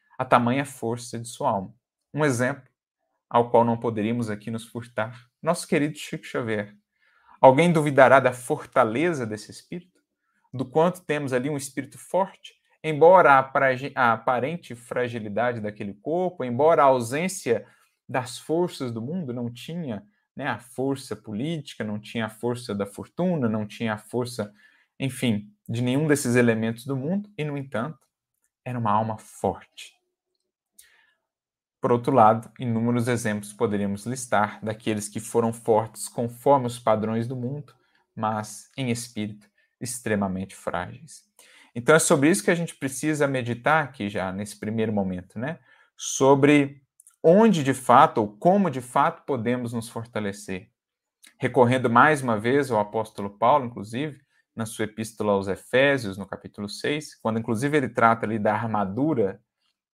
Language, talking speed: Portuguese, 145 wpm